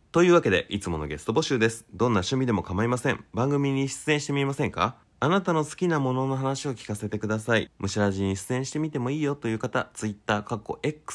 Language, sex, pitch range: Japanese, male, 90-130 Hz